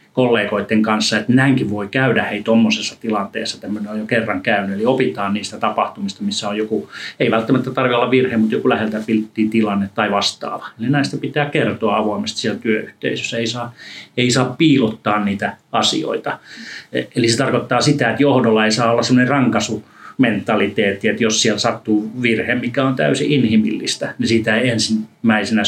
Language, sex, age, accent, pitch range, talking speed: Finnish, male, 30-49, native, 110-125 Hz, 160 wpm